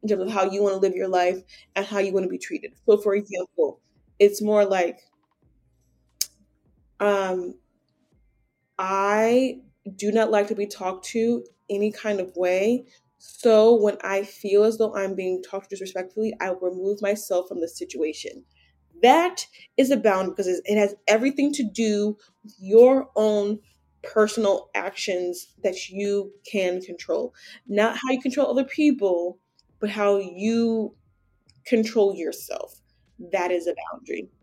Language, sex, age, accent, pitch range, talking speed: English, female, 20-39, American, 190-235 Hz, 150 wpm